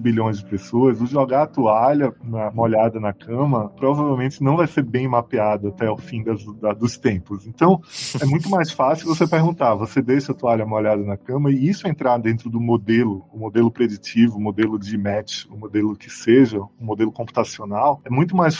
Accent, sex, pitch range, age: Brazilian, male, 110-145 Hz, 20-39